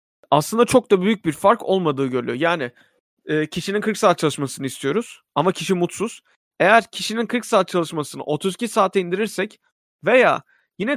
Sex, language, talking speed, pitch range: male, Turkish, 150 wpm, 140-185 Hz